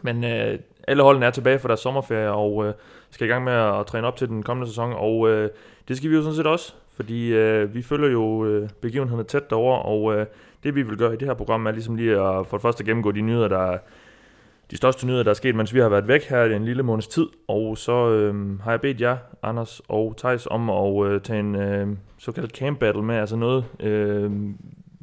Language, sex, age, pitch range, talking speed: Danish, male, 30-49, 105-130 Hz, 240 wpm